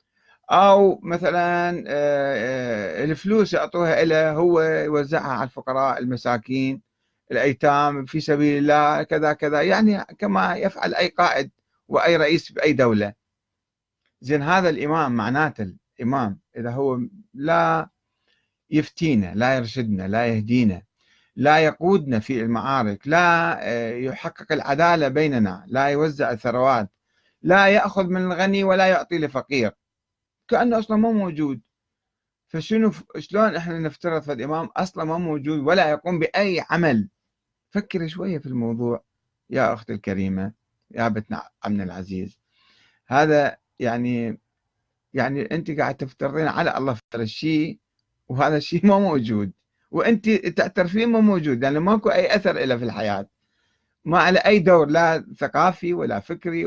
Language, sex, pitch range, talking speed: Arabic, male, 115-170 Hz, 125 wpm